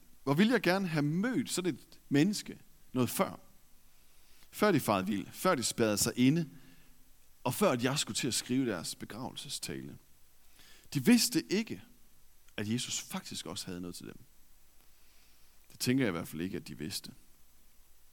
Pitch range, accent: 100-160 Hz, native